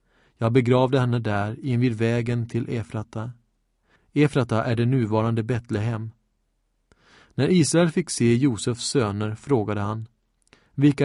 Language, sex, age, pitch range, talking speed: Swedish, male, 30-49, 115-135 Hz, 125 wpm